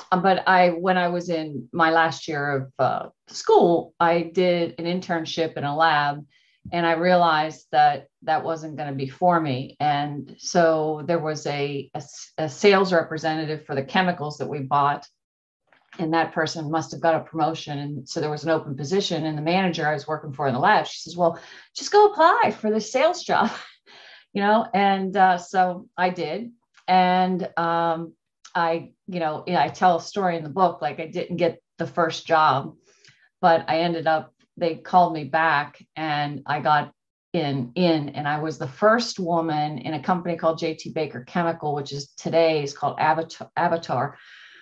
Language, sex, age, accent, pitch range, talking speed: English, female, 40-59, American, 150-180 Hz, 185 wpm